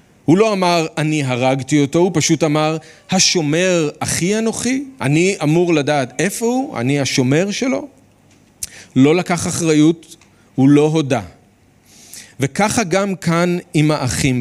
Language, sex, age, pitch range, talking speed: Hebrew, male, 40-59, 125-175 Hz, 130 wpm